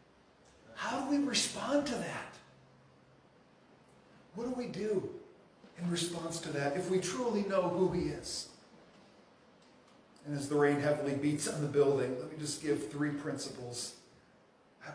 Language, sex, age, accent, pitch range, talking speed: English, male, 40-59, American, 145-190 Hz, 150 wpm